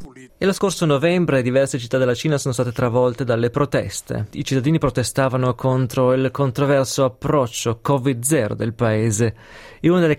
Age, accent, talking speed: 20-39, native, 155 wpm